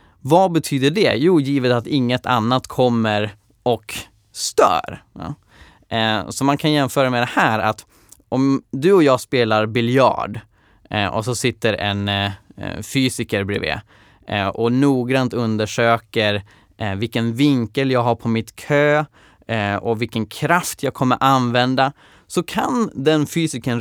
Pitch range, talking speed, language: 115-165 Hz, 130 wpm, Swedish